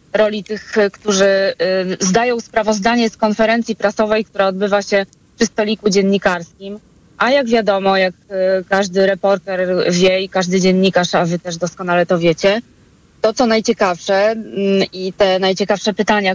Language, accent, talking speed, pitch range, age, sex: Polish, native, 135 wpm, 190-220 Hz, 20-39, female